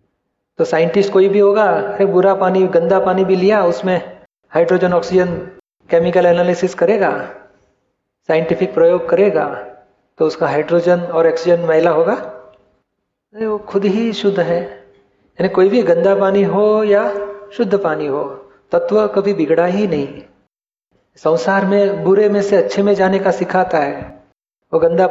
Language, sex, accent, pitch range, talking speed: Gujarati, male, native, 165-195 Hz, 140 wpm